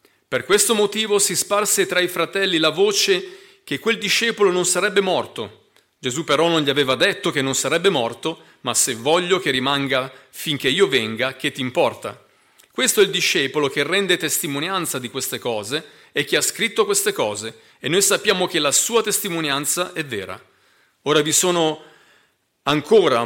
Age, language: 40-59, Italian